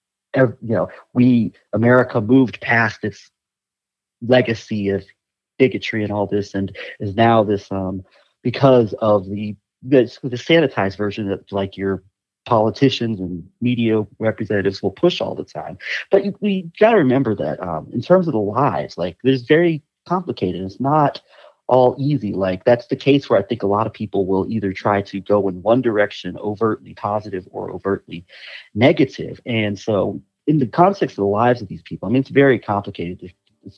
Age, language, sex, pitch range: 30-49, English, male, 95-125 Hz